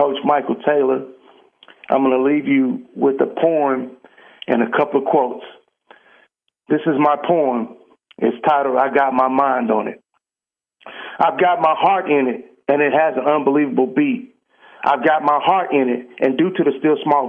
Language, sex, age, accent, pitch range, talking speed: English, male, 50-69, American, 130-160 Hz, 180 wpm